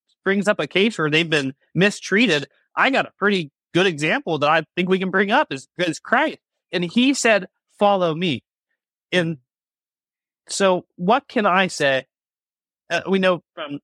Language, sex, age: English, male, 30-49